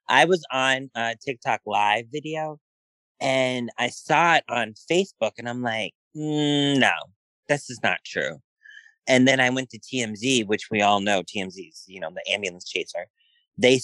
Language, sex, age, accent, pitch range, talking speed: English, male, 30-49, American, 115-165 Hz, 170 wpm